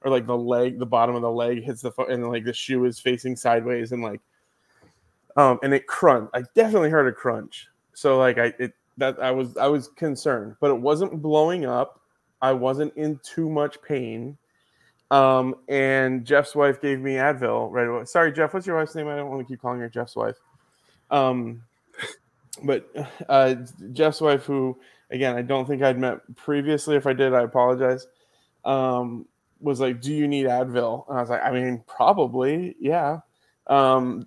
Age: 20-39